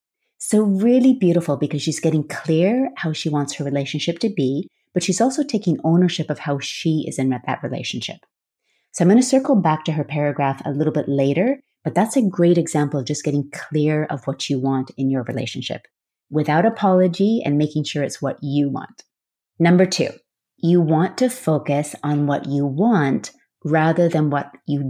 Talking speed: 190 wpm